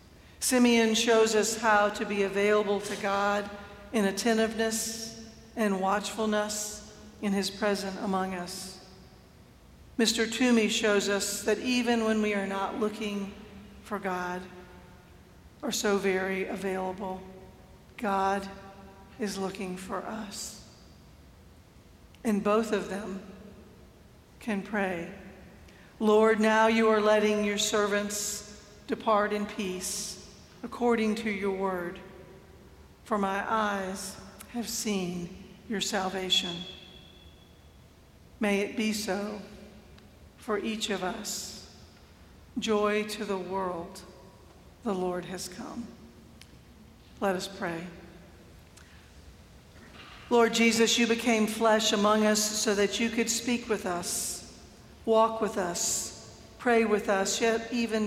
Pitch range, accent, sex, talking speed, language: 190-220 Hz, American, female, 110 wpm, English